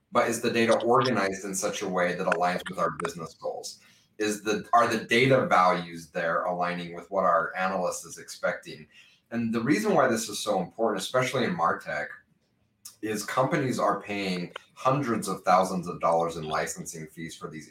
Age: 30-49